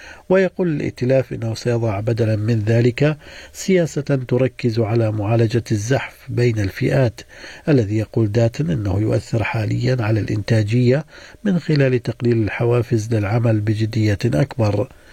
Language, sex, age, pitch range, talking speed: Arabic, male, 50-69, 110-130 Hz, 115 wpm